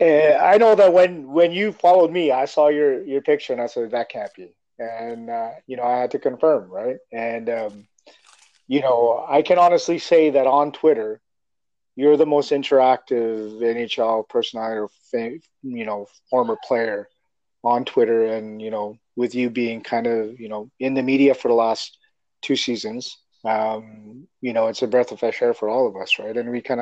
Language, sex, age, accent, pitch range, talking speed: English, male, 30-49, American, 110-135 Hz, 195 wpm